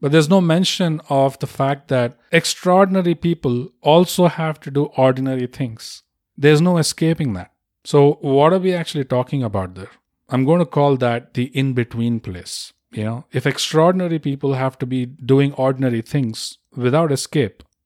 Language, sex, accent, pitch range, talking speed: English, male, Indian, 115-150 Hz, 165 wpm